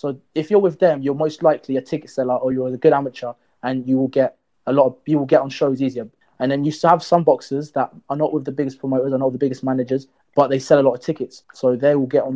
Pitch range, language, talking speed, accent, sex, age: 130-155 Hz, English, 290 wpm, British, male, 20-39